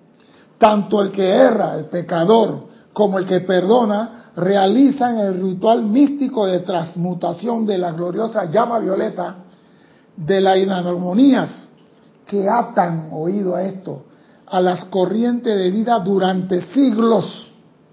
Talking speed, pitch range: 120 wpm, 180-230 Hz